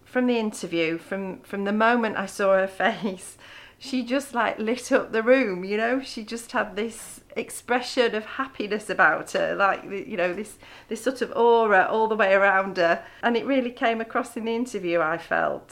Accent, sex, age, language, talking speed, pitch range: British, female, 40-59, English, 200 wpm, 180-220 Hz